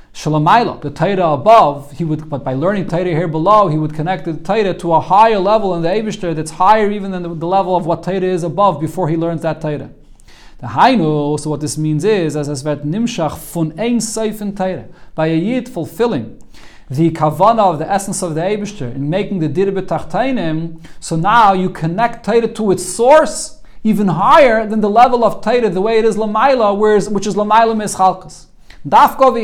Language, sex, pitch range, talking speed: English, male, 160-210 Hz, 195 wpm